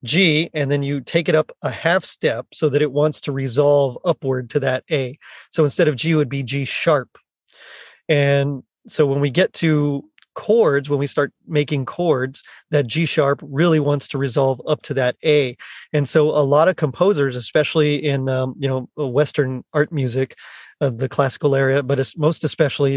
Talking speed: 195 wpm